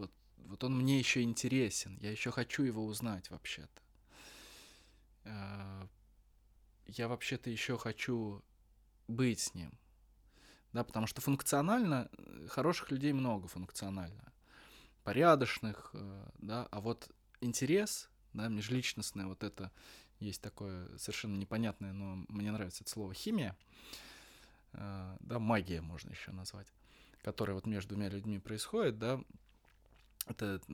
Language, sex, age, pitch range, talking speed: Russian, male, 20-39, 100-120 Hz, 115 wpm